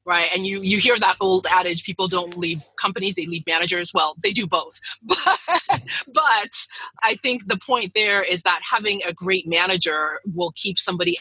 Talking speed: 185 wpm